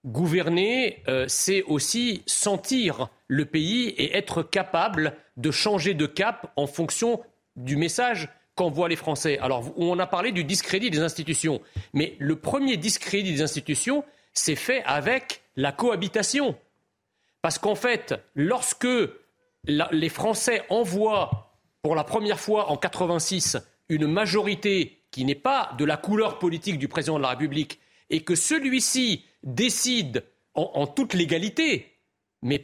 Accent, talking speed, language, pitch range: French, 140 wpm, French, 160-220 Hz